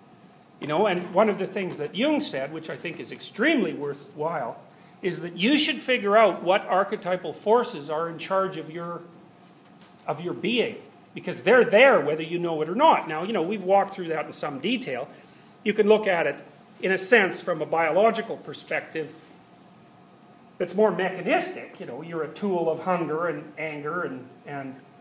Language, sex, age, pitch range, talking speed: English, male, 40-59, 160-210 Hz, 185 wpm